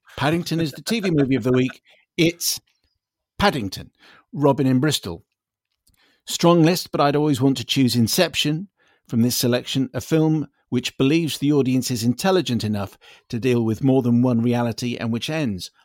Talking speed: 165 wpm